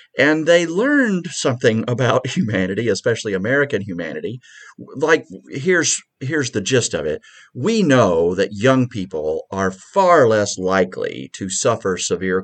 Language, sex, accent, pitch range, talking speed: English, male, American, 110-185 Hz, 135 wpm